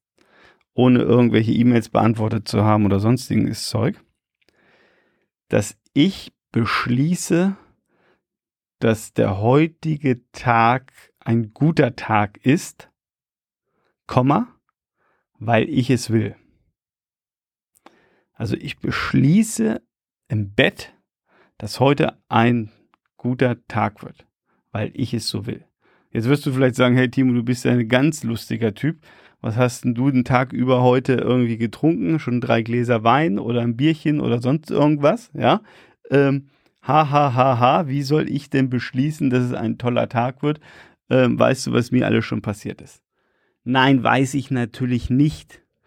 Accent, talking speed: German, 140 wpm